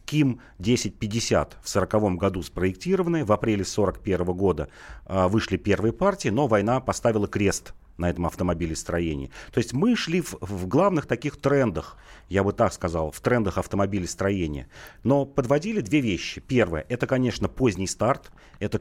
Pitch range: 95-125 Hz